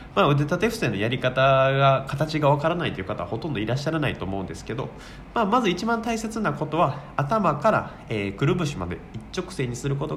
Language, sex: Japanese, male